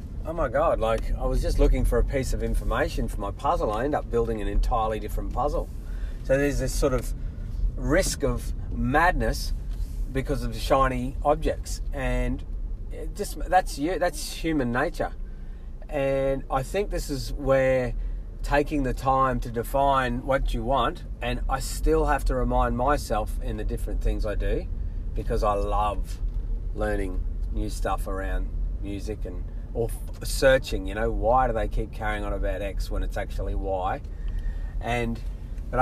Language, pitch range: English, 100-140 Hz